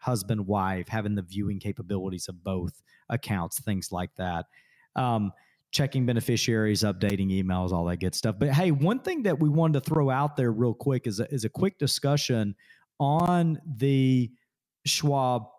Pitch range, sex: 105-150 Hz, male